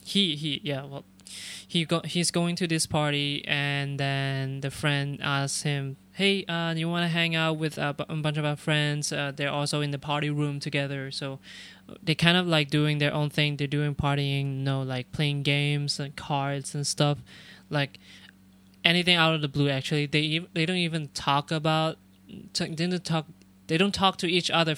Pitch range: 135-160 Hz